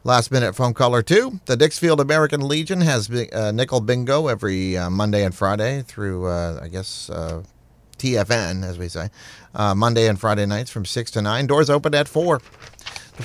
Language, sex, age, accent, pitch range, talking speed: English, male, 30-49, American, 100-135 Hz, 180 wpm